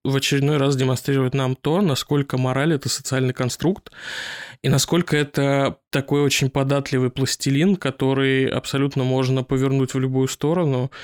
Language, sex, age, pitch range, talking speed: Russian, male, 20-39, 130-150 Hz, 135 wpm